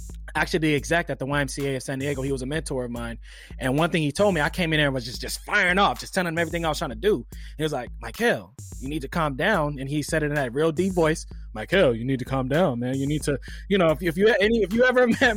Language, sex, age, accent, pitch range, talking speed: English, male, 20-39, American, 135-170 Hz, 305 wpm